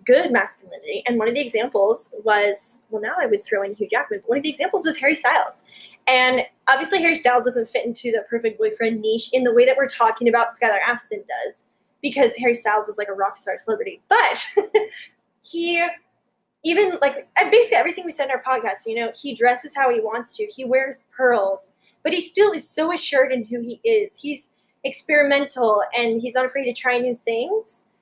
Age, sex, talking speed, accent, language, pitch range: 10-29, female, 205 wpm, American, English, 235-335 Hz